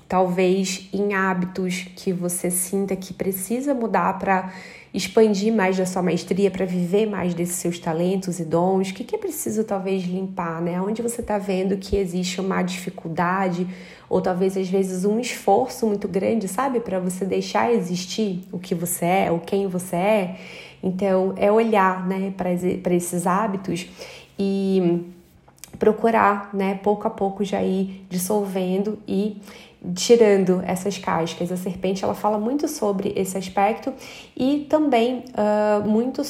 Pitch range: 180-210 Hz